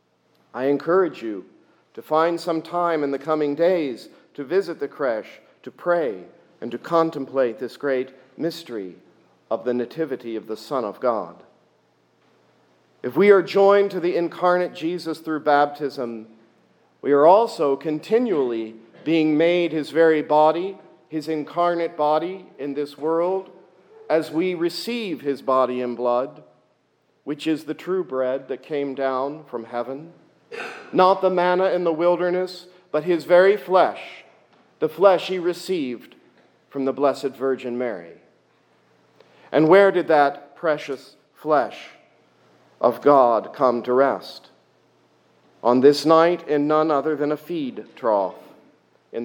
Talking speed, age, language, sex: 140 wpm, 50-69, English, male